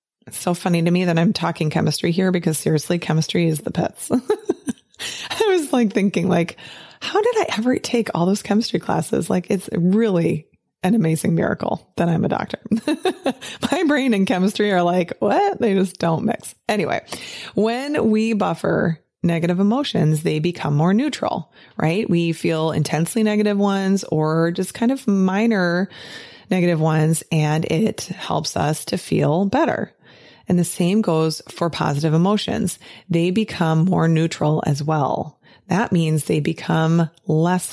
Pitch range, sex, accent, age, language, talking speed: 160-210 Hz, female, American, 20-39, English, 155 wpm